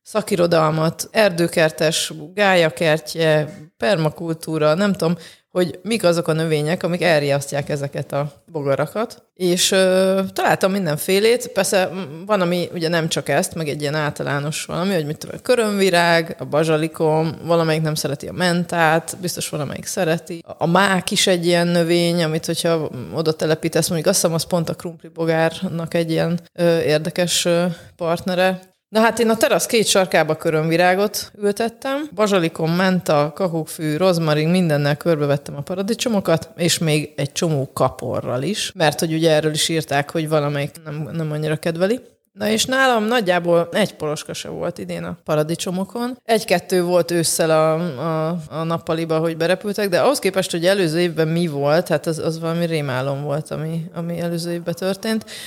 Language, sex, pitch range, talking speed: Hungarian, female, 155-190 Hz, 155 wpm